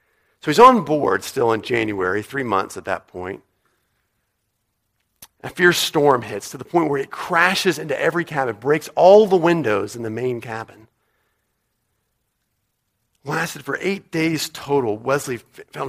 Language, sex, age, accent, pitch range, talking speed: English, male, 50-69, American, 105-140 Hz, 150 wpm